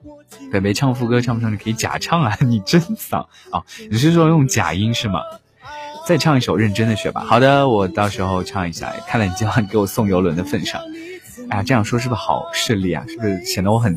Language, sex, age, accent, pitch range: Chinese, male, 20-39, native, 95-130 Hz